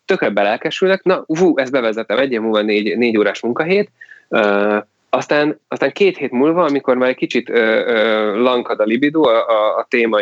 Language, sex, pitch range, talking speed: Hungarian, male, 110-165 Hz, 180 wpm